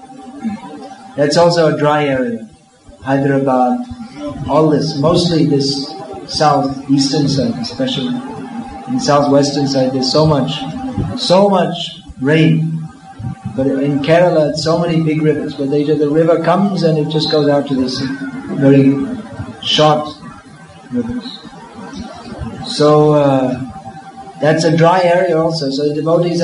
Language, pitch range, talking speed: English, 140-175 Hz, 130 wpm